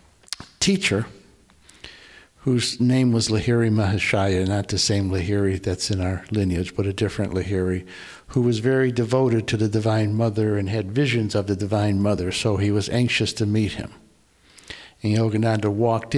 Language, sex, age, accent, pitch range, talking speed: English, male, 60-79, American, 100-120 Hz, 160 wpm